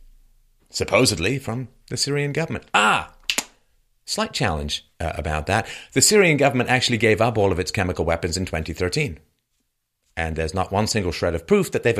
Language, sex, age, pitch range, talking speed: English, male, 40-59, 90-140 Hz, 170 wpm